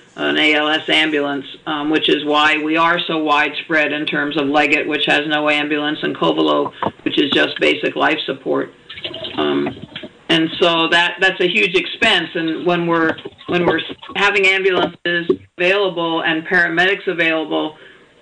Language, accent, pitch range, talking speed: English, American, 155-175 Hz, 150 wpm